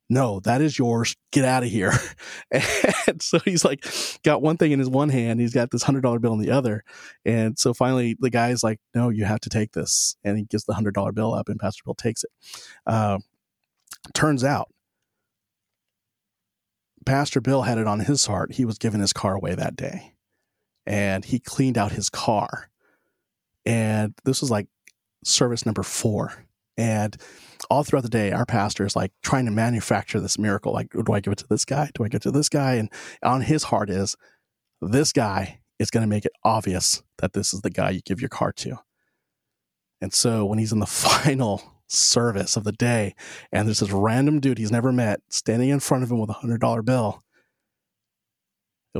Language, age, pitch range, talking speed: English, 30-49, 105-130 Hz, 205 wpm